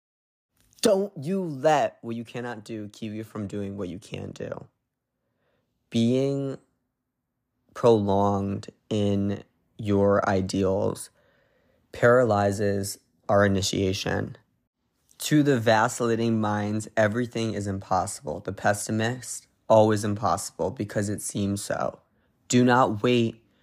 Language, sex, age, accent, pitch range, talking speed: English, male, 20-39, American, 105-160 Hz, 105 wpm